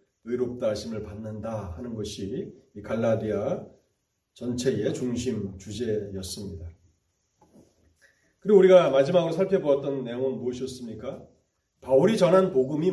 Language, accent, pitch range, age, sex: Korean, native, 105-180 Hz, 30-49, male